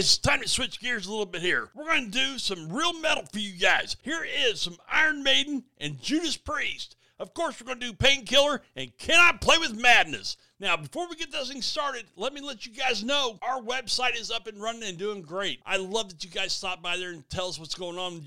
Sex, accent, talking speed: male, American, 250 wpm